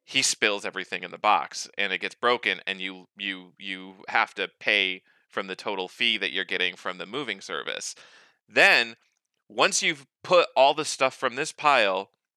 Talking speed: 185 wpm